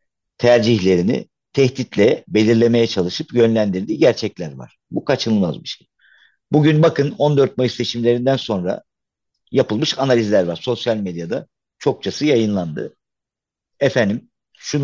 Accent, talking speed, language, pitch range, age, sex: native, 105 wpm, Turkish, 100-135 Hz, 50-69, male